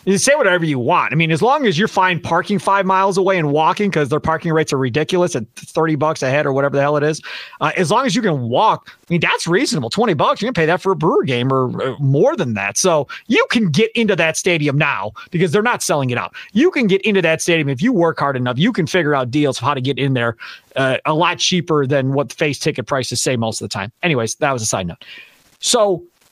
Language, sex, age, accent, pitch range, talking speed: English, male, 30-49, American, 150-230 Hz, 270 wpm